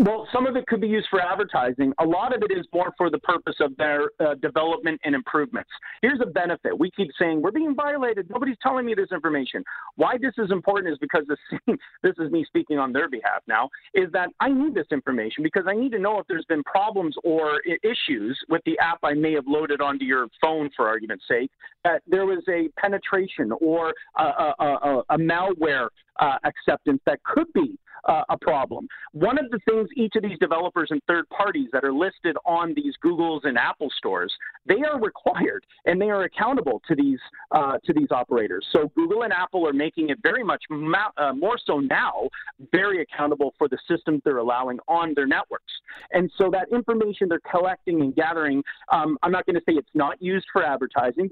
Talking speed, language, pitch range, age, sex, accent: 205 wpm, English, 160-240 Hz, 40-59, male, American